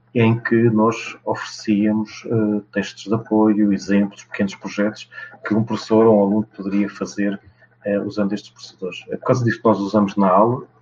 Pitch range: 100-110 Hz